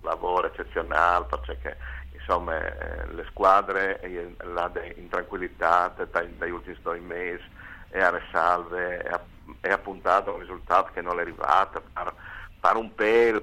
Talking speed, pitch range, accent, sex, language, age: 130 wpm, 85-100 Hz, native, male, Italian, 50-69